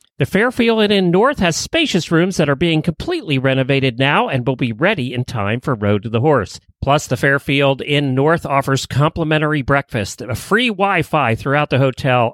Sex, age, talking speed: male, 40-59, 185 wpm